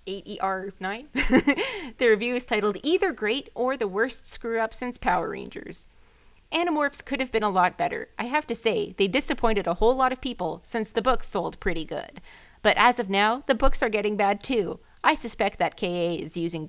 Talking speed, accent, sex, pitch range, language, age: 200 wpm, American, female, 190-260 Hz, English, 30-49